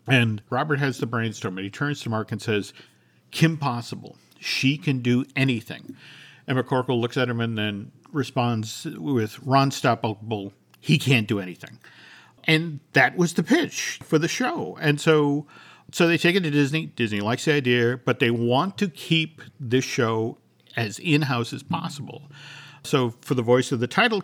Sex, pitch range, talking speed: male, 115-150 Hz, 175 wpm